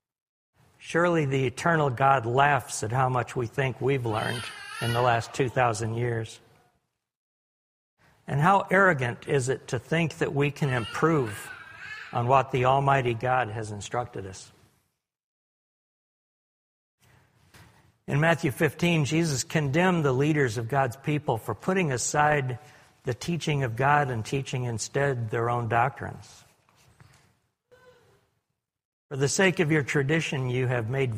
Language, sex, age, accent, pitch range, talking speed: English, male, 60-79, American, 120-150 Hz, 130 wpm